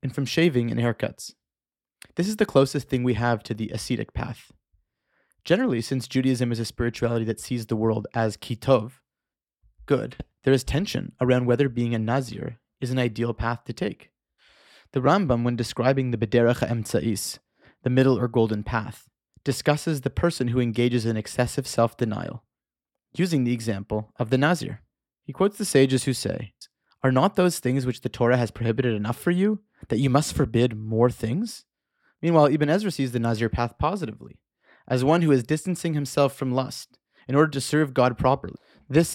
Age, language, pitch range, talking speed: 30-49, English, 115-140 Hz, 180 wpm